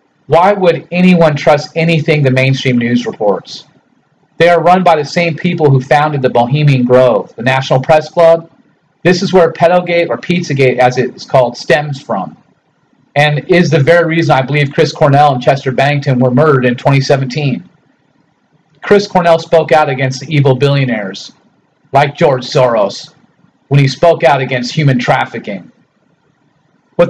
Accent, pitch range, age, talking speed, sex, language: American, 130-165 Hz, 40-59, 160 wpm, male, English